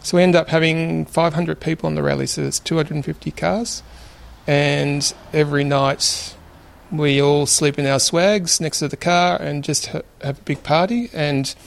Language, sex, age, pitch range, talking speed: German, male, 30-49, 105-165 Hz, 175 wpm